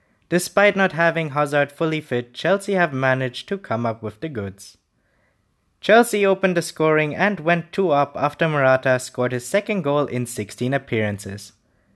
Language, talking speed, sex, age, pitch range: English, 155 wpm, male, 20-39, 120-175 Hz